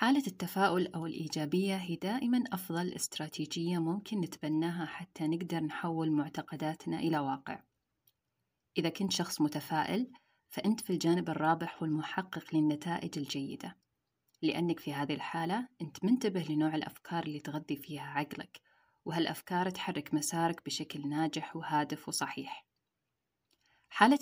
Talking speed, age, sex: 115 wpm, 30-49, female